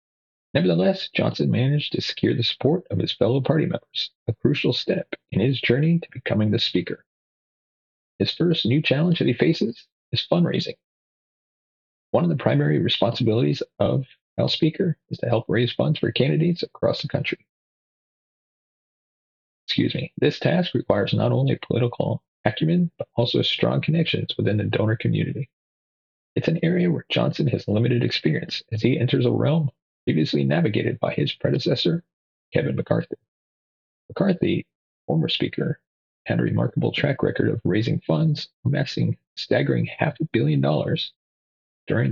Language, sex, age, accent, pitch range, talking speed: English, male, 40-59, American, 120-165 Hz, 150 wpm